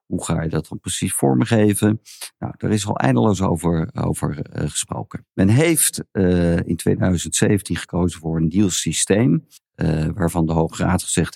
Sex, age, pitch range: male, 50-69, 80-100 Hz